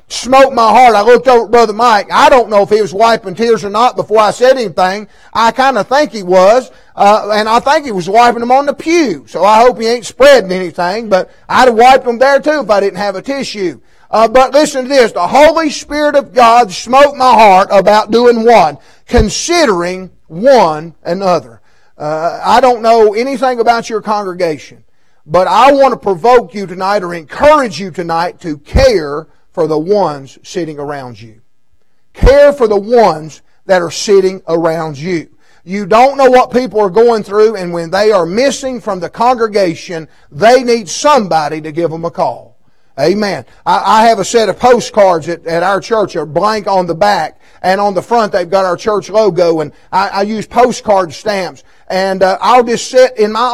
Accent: American